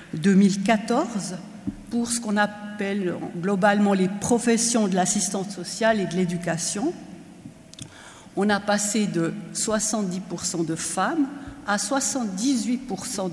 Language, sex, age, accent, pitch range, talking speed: French, female, 60-79, French, 185-230 Hz, 105 wpm